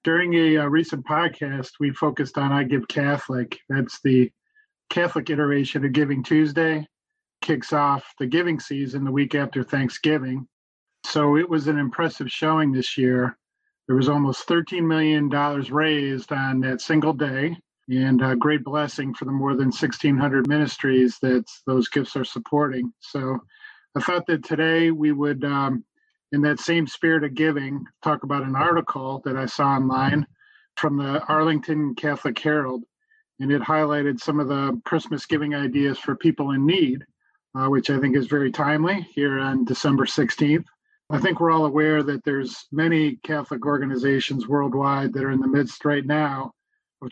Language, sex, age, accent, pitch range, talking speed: English, male, 40-59, American, 135-155 Hz, 165 wpm